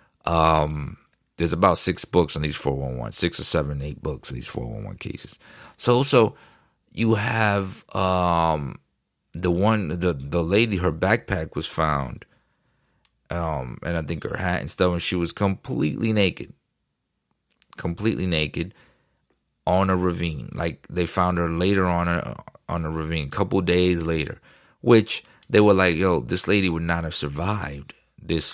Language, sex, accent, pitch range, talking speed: English, male, American, 80-95 Hz, 160 wpm